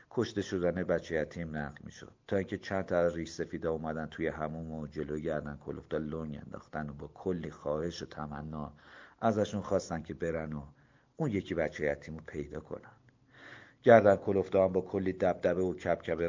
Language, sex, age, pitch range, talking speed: Persian, male, 50-69, 75-95 Hz, 175 wpm